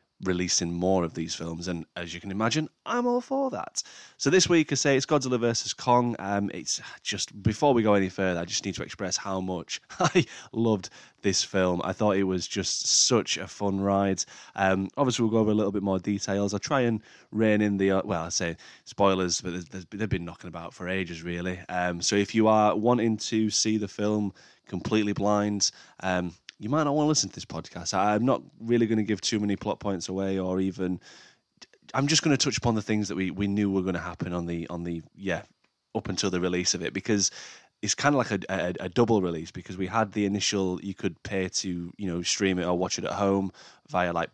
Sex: male